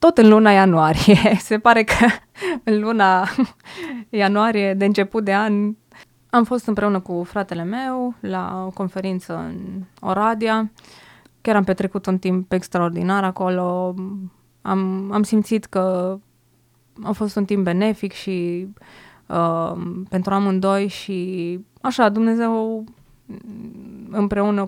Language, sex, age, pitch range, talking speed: Romanian, female, 20-39, 185-225 Hz, 120 wpm